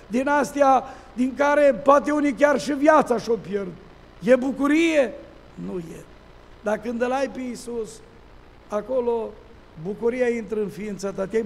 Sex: male